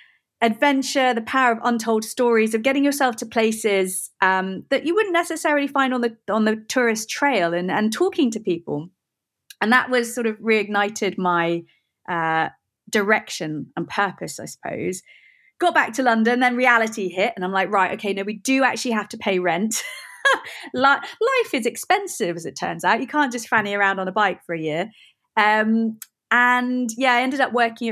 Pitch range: 190-245 Hz